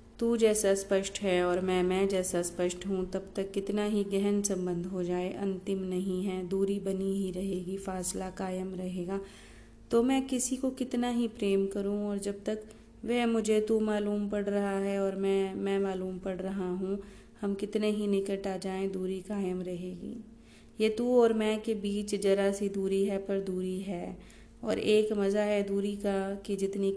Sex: female